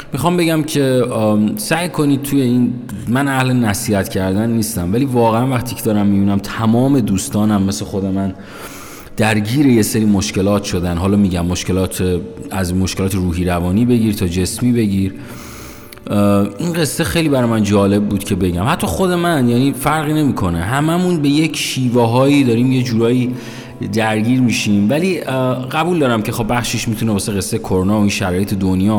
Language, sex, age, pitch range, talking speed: Persian, male, 30-49, 100-135 Hz, 165 wpm